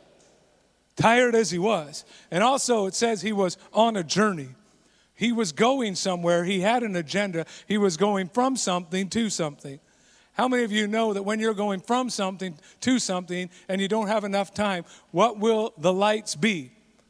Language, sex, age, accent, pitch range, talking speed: English, male, 50-69, American, 195-235 Hz, 185 wpm